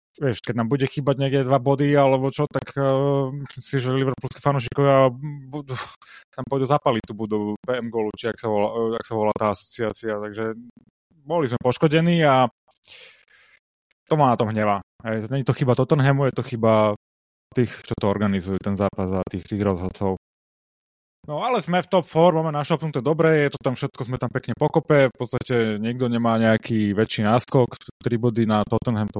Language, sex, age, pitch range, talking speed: Slovak, male, 20-39, 115-155 Hz, 185 wpm